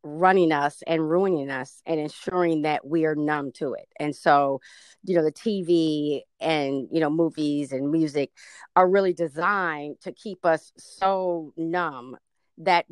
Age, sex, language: 30-49, female, English